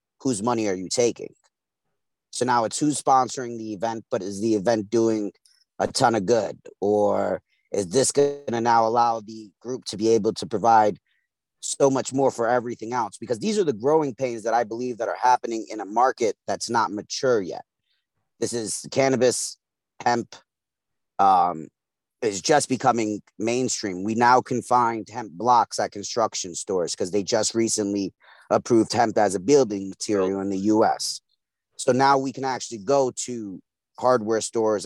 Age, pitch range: 30-49, 105-125 Hz